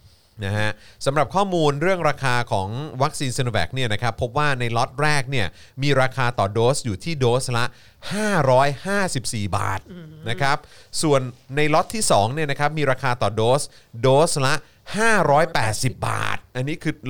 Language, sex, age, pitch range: Thai, male, 30-49, 105-140 Hz